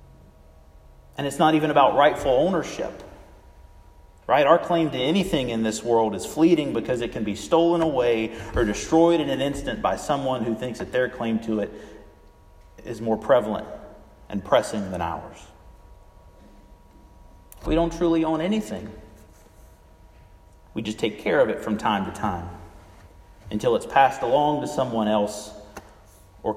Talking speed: 150 wpm